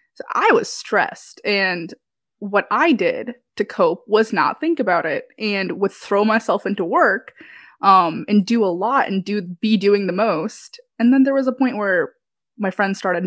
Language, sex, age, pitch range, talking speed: English, female, 20-39, 180-240 Hz, 190 wpm